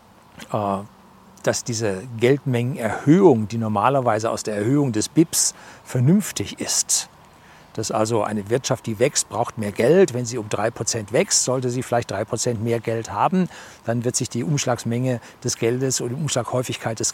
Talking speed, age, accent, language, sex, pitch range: 155 wpm, 40-59, German, German, male, 110-135 Hz